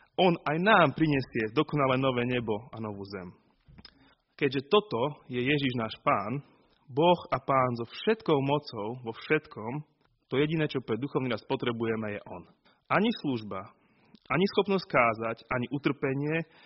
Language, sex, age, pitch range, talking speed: Slovak, male, 30-49, 120-160 Hz, 145 wpm